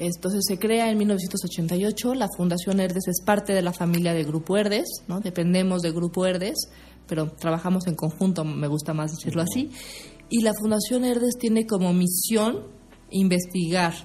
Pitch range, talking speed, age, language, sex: 165-195 Hz, 160 wpm, 30-49, Spanish, female